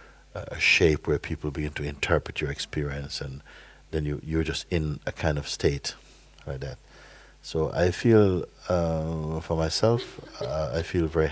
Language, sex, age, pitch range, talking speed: English, male, 60-79, 75-85 Hz, 165 wpm